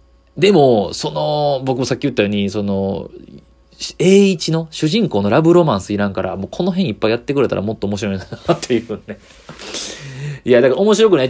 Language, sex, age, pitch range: Japanese, male, 20-39, 90-125 Hz